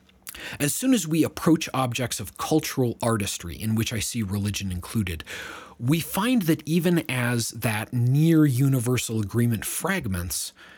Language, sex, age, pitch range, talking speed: English, male, 30-49, 100-140 Hz, 135 wpm